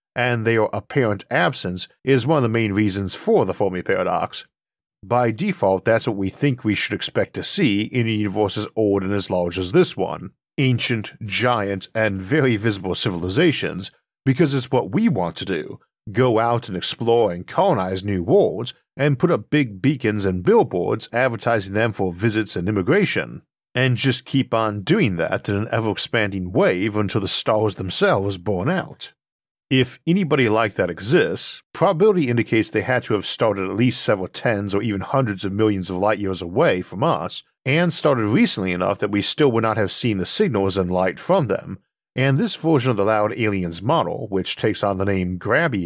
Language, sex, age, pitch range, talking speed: English, male, 50-69, 95-125 Hz, 190 wpm